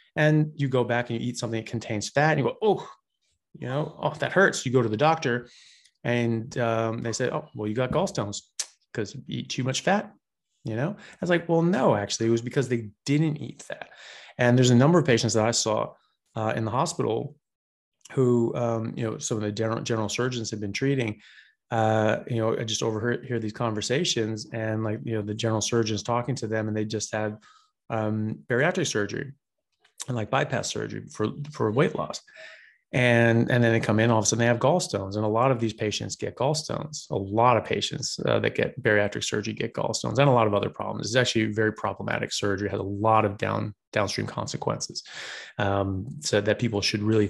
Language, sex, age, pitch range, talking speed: English, male, 30-49, 110-135 Hz, 215 wpm